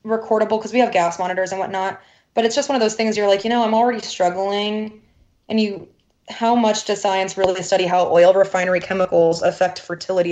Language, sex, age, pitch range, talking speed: English, female, 20-39, 180-215 Hz, 210 wpm